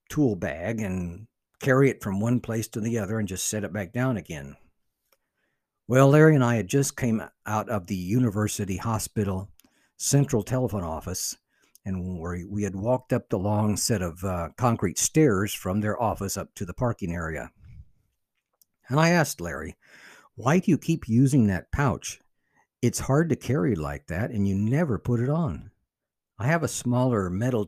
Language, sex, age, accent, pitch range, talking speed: English, male, 60-79, American, 95-130 Hz, 175 wpm